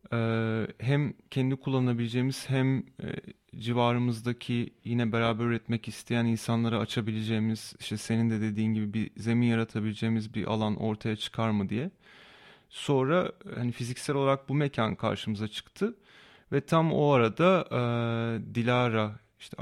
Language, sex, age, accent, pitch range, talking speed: Turkish, male, 30-49, native, 110-130 Hz, 130 wpm